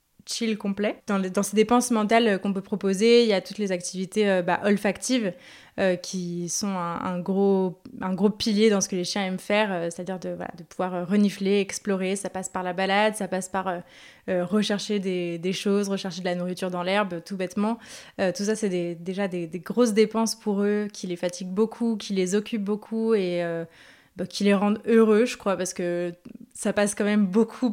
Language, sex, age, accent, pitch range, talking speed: French, female, 20-39, French, 185-215 Hz, 215 wpm